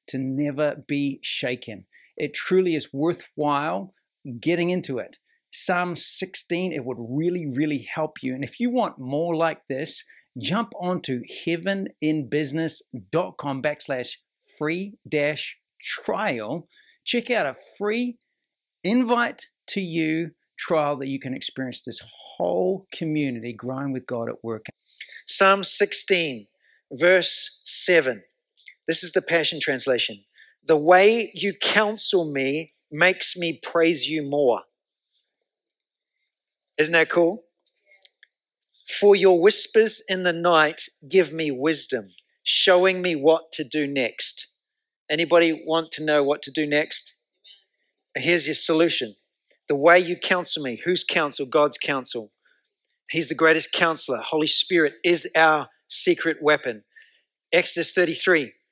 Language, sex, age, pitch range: English, male, 60-79, 145-185 Hz